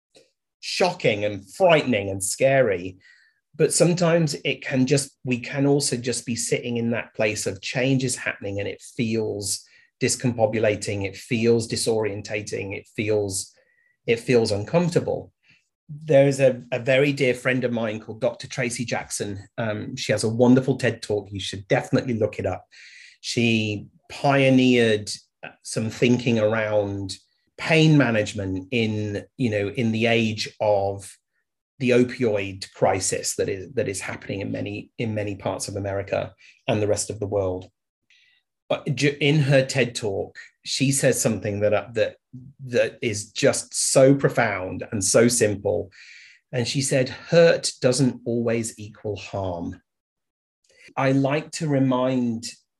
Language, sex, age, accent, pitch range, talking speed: English, male, 30-49, British, 105-135 Hz, 145 wpm